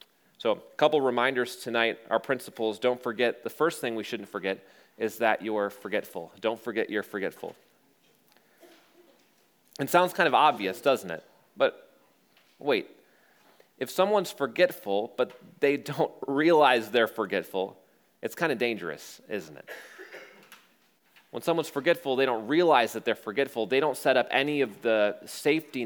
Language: English